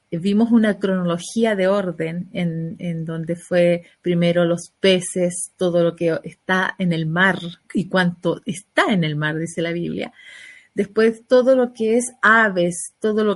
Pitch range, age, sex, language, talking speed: 170-205 Hz, 30-49, female, Spanish, 160 wpm